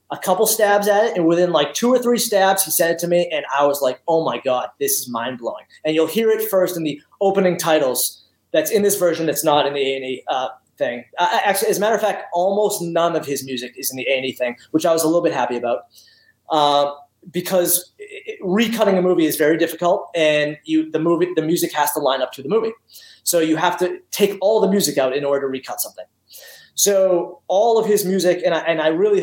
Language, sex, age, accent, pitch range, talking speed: English, male, 20-39, American, 135-185 Hz, 240 wpm